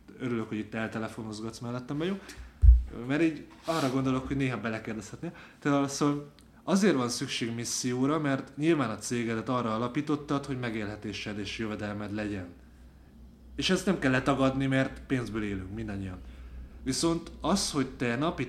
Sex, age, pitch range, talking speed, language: male, 20-39, 105-130 Hz, 140 wpm, Hungarian